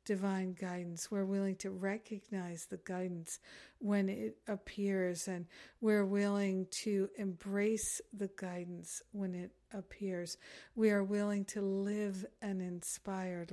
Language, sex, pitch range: English, female, 180-205 Hz